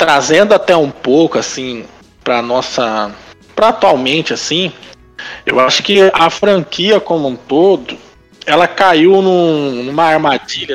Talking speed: 125 wpm